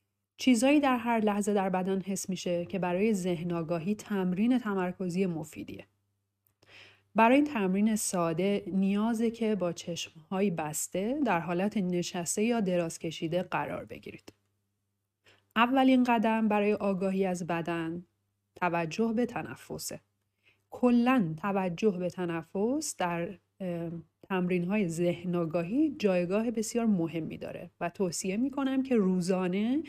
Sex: female